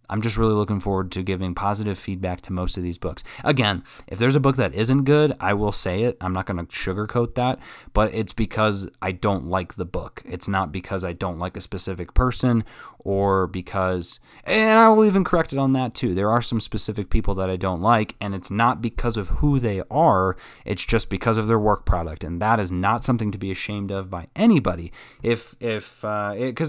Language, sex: English, male